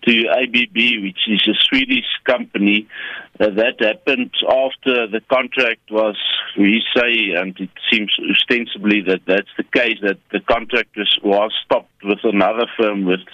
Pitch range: 105-125 Hz